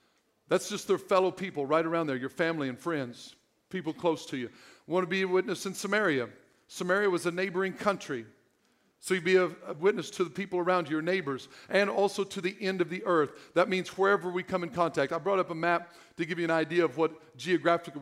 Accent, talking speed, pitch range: American, 230 wpm, 165-205 Hz